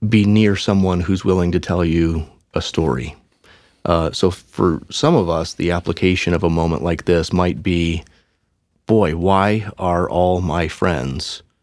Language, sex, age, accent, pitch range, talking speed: English, male, 30-49, American, 80-95 Hz, 160 wpm